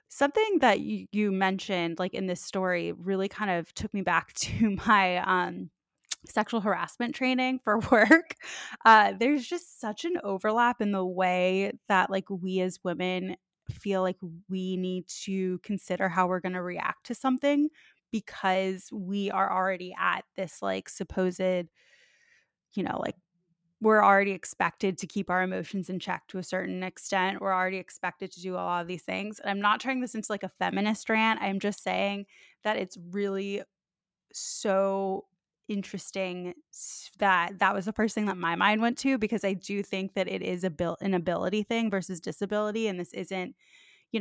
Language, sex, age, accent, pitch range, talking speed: English, female, 20-39, American, 185-215 Hz, 180 wpm